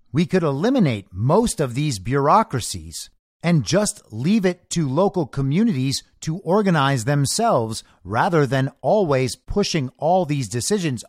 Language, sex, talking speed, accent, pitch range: English, male, 130 wpm, American, 125-185 Hz